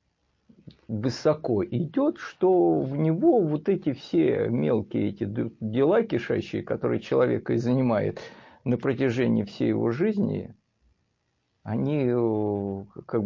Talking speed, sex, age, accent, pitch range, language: 105 wpm, male, 50-69, native, 110-140 Hz, Russian